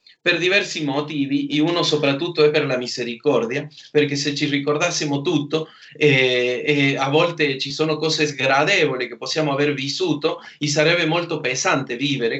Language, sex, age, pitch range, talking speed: Italian, male, 30-49, 130-160 Hz, 155 wpm